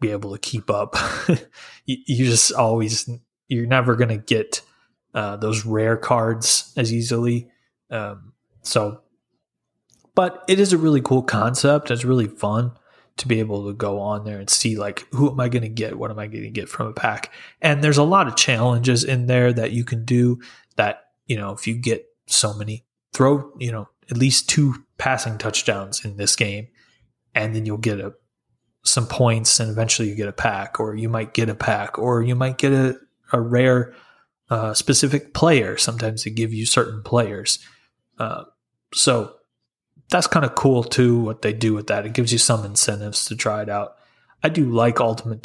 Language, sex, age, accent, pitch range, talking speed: English, male, 20-39, American, 110-130 Hz, 195 wpm